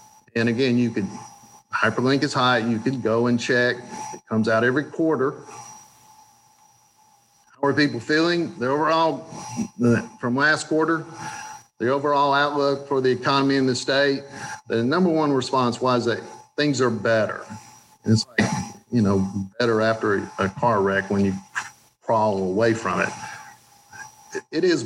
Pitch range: 110-145 Hz